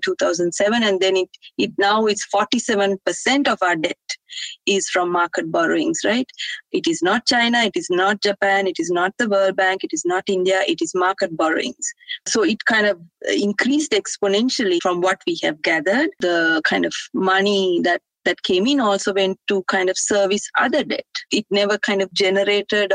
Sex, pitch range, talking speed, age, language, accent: female, 185-240 Hz, 185 wpm, 30-49, English, Indian